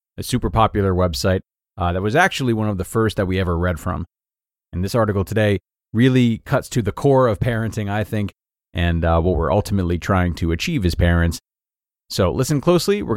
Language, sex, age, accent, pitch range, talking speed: English, male, 30-49, American, 90-115 Hz, 200 wpm